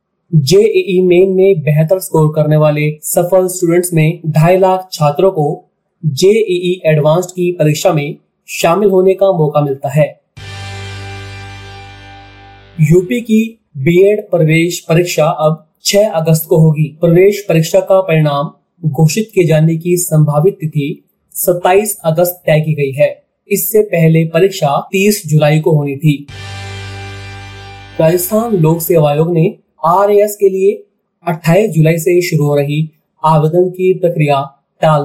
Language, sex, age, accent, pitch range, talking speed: Hindi, male, 30-49, native, 150-185 Hz, 135 wpm